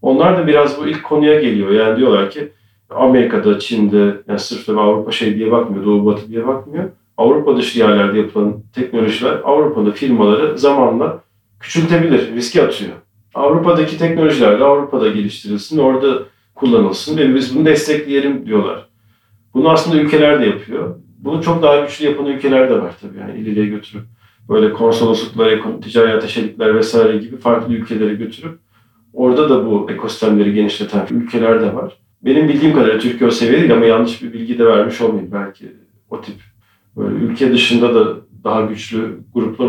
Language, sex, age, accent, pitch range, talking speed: Turkish, male, 40-59, native, 110-145 Hz, 150 wpm